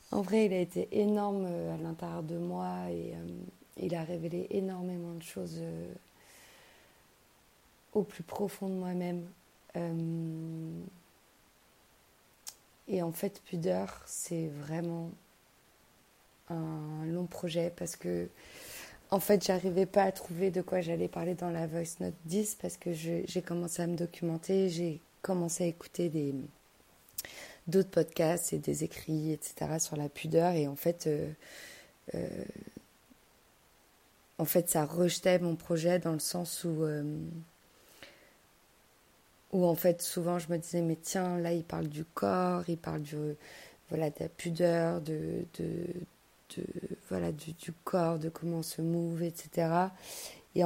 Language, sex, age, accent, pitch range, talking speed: French, female, 30-49, French, 160-180 Hz, 150 wpm